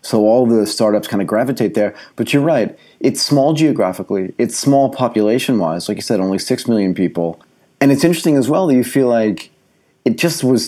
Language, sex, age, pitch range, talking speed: English, male, 30-49, 90-120 Hz, 200 wpm